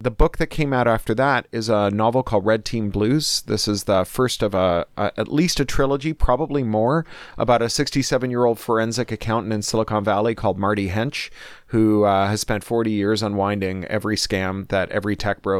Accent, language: American, English